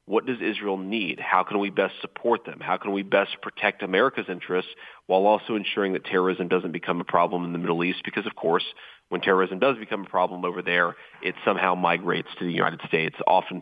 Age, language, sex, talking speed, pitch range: 30-49, English, male, 215 wpm, 90-105 Hz